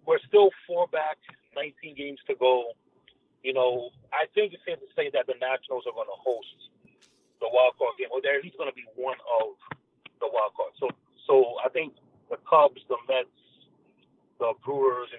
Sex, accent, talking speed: male, American, 190 wpm